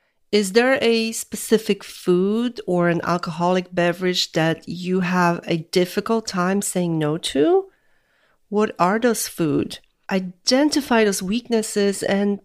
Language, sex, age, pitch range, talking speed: English, female, 40-59, 170-225 Hz, 125 wpm